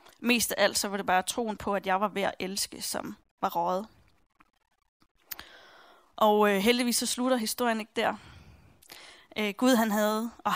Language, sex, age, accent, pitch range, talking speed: Danish, female, 20-39, native, 205-245 Hz, 175 wpm